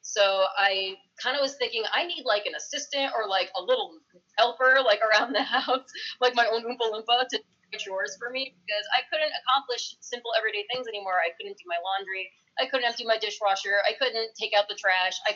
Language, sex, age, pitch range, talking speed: English, female, 20-39, 195-250 Hz, 215 wpm